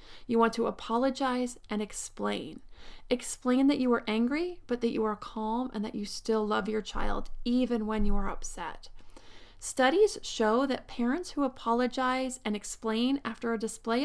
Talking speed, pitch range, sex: 165 wpm, 220-255 Hz, female